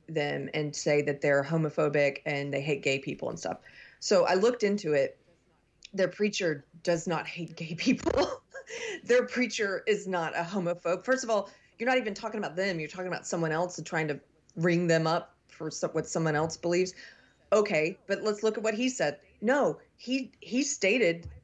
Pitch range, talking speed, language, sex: 160-210 Hz, 190 wpm, English, female